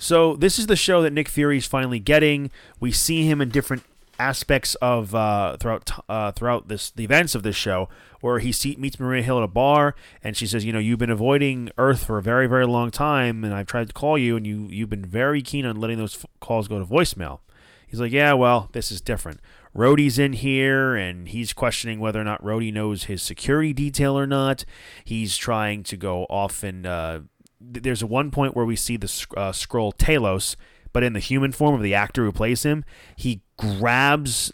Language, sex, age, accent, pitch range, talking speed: English, male, 30-49, American, 105-135 Hz, 215 wpm